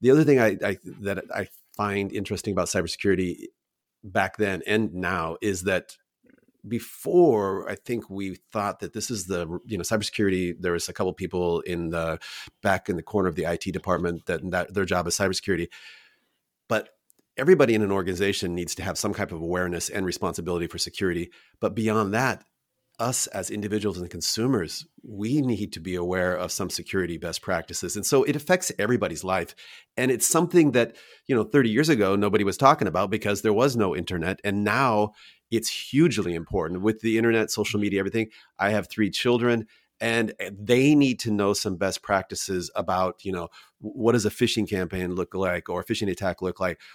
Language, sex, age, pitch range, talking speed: English, male, 40-59, 90-115 Hz, 190 wpm